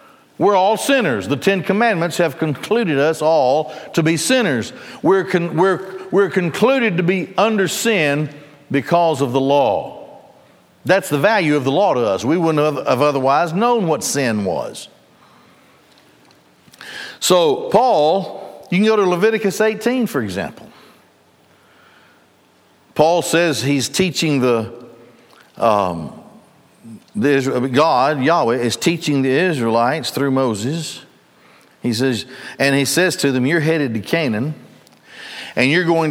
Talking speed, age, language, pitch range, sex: 135 wpm, 60-79, English, 125-185 Hz, male